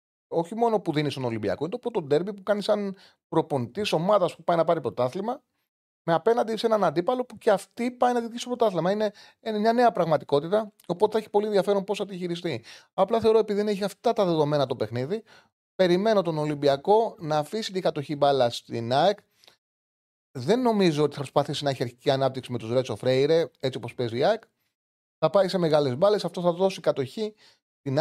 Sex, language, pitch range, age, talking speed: male, Greek, 125-195 Hz, 30-49, 200 wpm